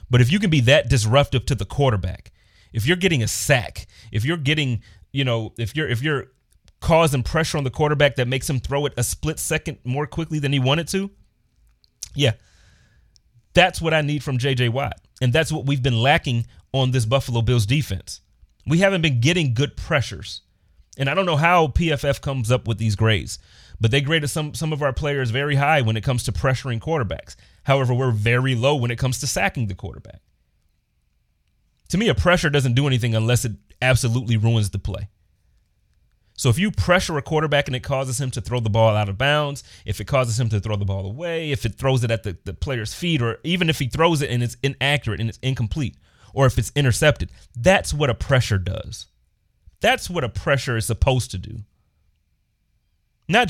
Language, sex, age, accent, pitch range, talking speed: English, male, 30-49, American, 110-145 Hz, 205 wpm